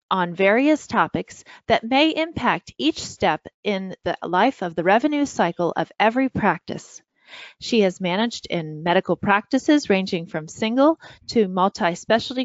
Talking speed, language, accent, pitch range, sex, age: 140 wpm, English, American, 180-250 Hz, female, 30-49